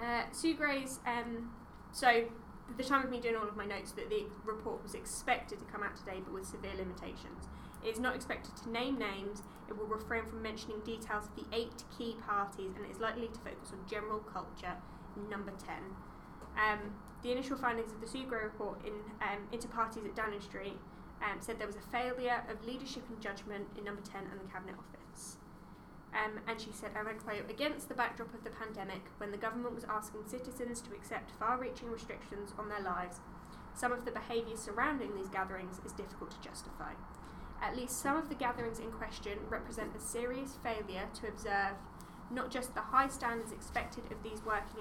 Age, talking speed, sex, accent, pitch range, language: 10-29, 200 wpm, female, British, 205-235 Hz, English